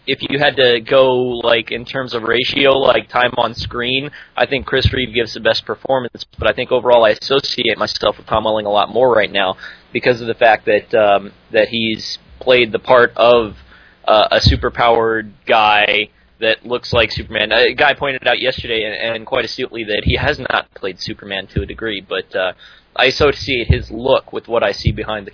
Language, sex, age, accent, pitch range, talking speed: English, male, 20-39, American, 110-130 Hz, 205 wpm